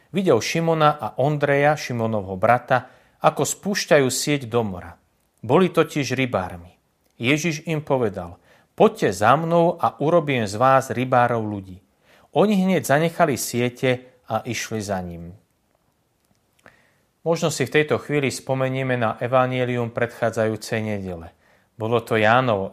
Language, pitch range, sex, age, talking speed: Slovak, 105-145 Hz, male, 40-59, 125 wpm